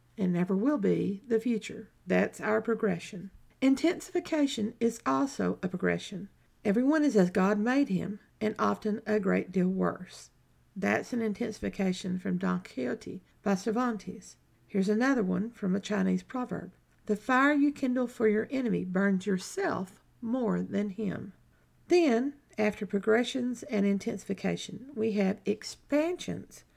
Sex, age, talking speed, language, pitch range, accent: female, 50-69, 135 wpm, English, 200-245 Hz, American